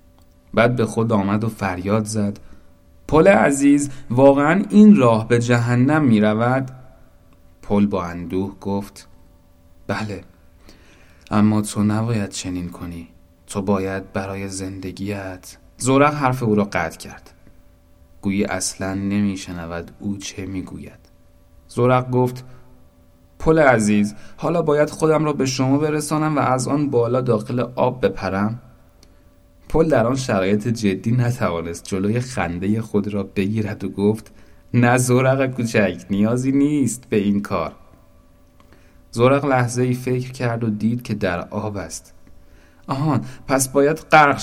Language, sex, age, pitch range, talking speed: Persian, male, 30-49, 90-125 Hz, 130 wpm